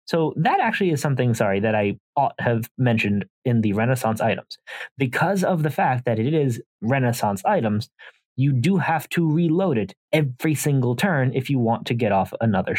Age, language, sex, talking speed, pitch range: 30-49, English, male, 190 wpm, 115-160 Hz